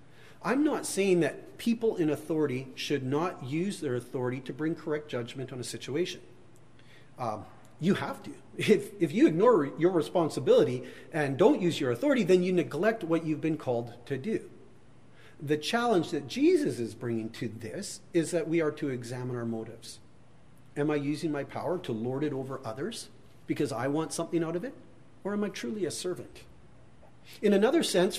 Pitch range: 130-190 Hz